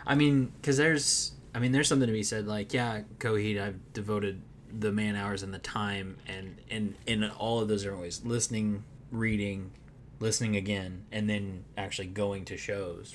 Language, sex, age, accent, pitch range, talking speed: English, male, 20-39, American, 95-115 Hz, 185 wpm